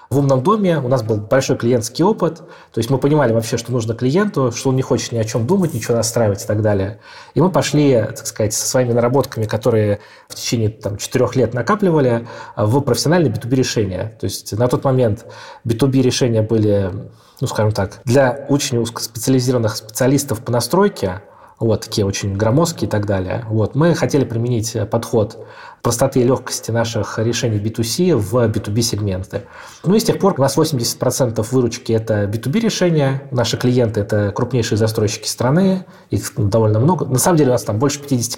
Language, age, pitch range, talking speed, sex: Russian, 20-39, 110-140 Hz, 170 wpm, male